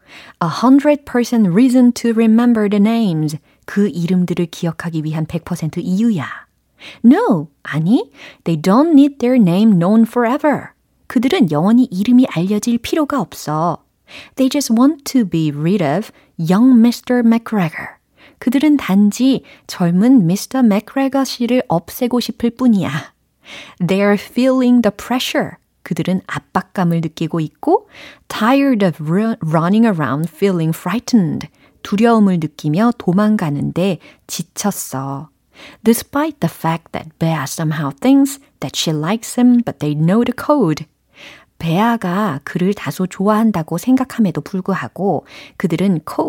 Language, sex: Korean, female